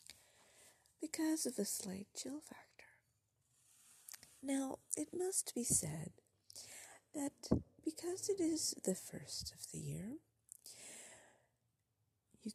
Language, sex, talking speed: English, female, 100 wpm